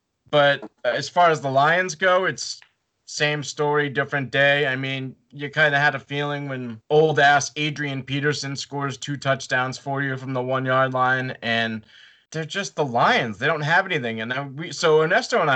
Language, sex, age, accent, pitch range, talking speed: English, male, 20-39, American, 125-150 Hz, 175 wpm